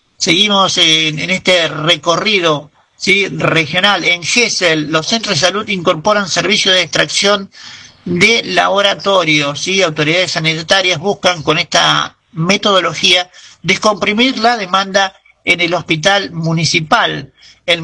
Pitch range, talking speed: 160-195 Hz, 110 wpm